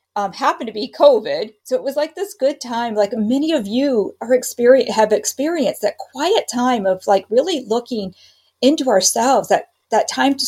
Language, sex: English, female